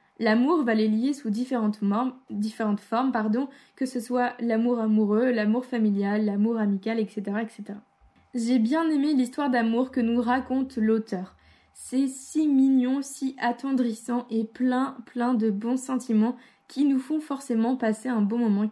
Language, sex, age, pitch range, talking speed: French, female, 20-39, 225-270 Hz, 155 wpm